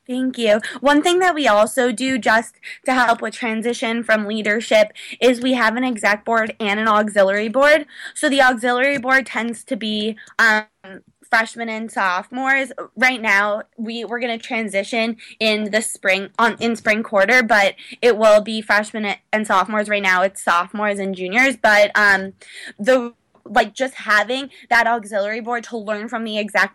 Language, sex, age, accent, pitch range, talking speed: English, female, 20-39, American, 210-250 Hz, 170 wpm